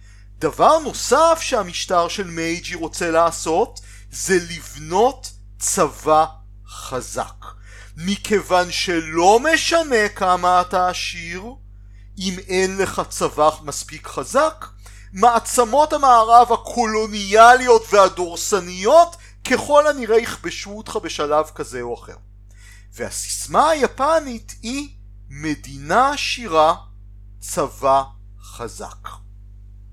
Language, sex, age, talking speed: Hebrew, male, 40-59, 85 wpm